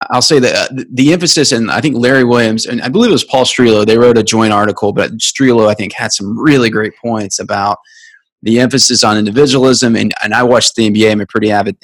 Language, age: English, 20-39